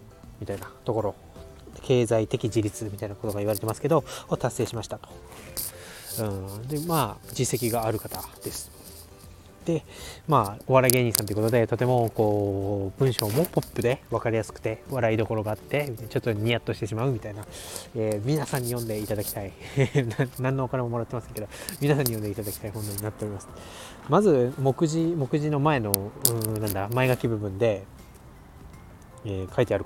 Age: 20-39